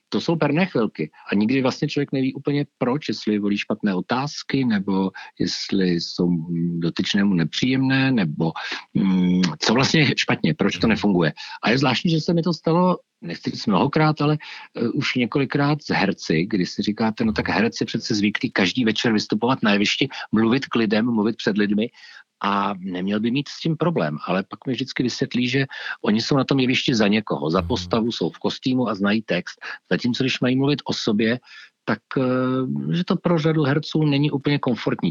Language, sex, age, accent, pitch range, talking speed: Czech, male, 50-69, native, 95-130 Hz, 180 wpm